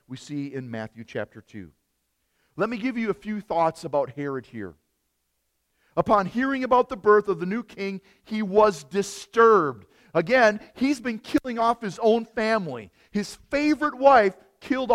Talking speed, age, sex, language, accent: 160 wpm, 40-59, male, English, American